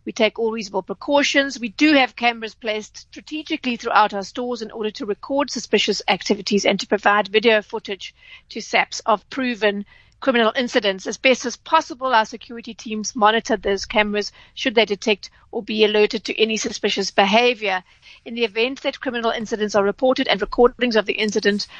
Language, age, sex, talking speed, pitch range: English, 40-59, female, 175 wpm, 205-245 Hz